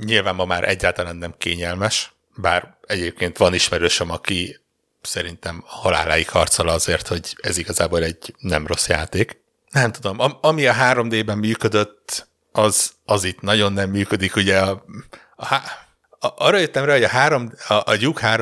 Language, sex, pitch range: Hungarian, male, 90-105 Hz